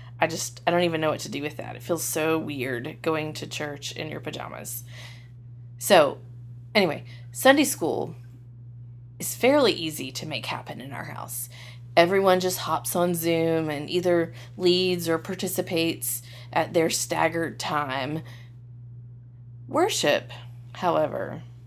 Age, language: 20-39, English